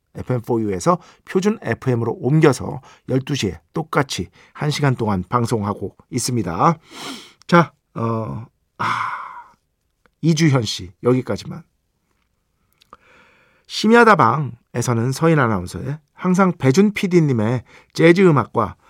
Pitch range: 120-180 Hz